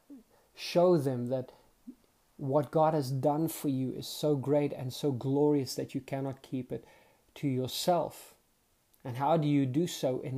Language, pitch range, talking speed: English, 130-150 Hz, 170 wpm